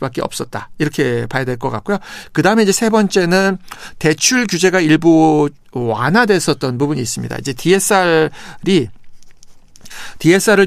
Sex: male